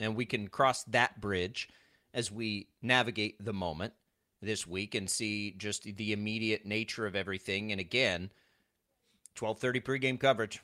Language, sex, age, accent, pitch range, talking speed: English, male, 30-49, American, 100-135 Hz, 145 wpm